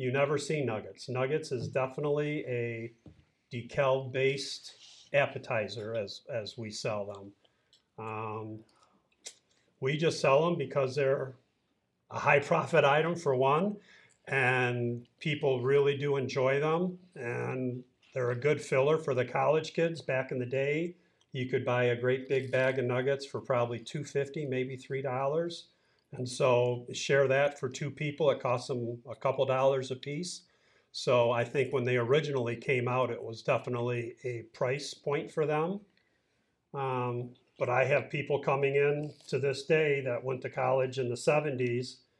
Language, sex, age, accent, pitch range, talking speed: English, male, 50-69, American, 125-145 Hz, 155 wpm